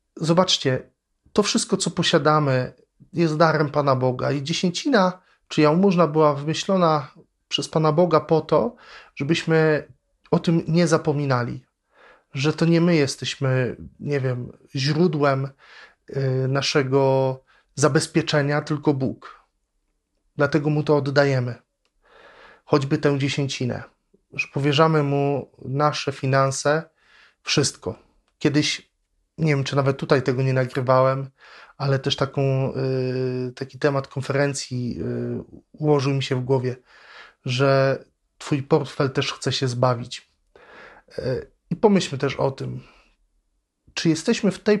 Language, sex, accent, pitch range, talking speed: Polish, male, native, 130-155 Hz, 115 wpm